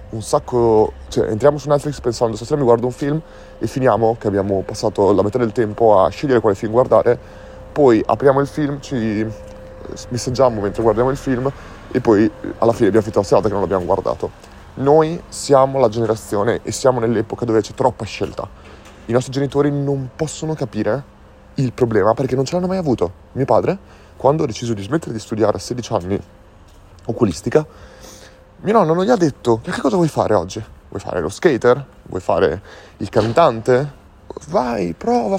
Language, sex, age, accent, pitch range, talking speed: Italian, male, 30-49, native, 105-140 Hz, 180 wpm